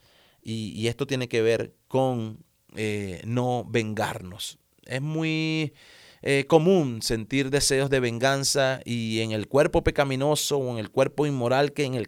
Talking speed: 155 wpm